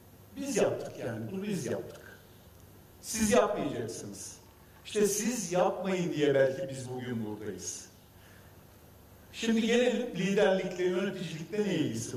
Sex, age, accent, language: male, 50-69, native, Turkish